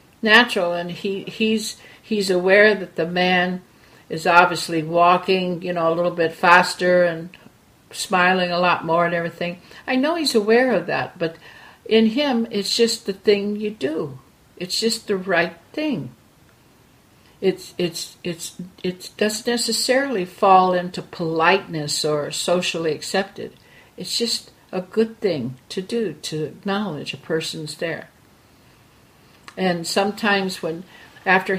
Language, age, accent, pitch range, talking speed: English, 60-79, American, 170-210 Hz, 140 wpm